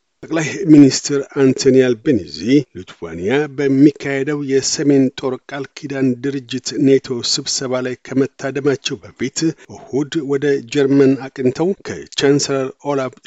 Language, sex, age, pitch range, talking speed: Amharic, male, 50-69, 130-140 Hz, 85 wpm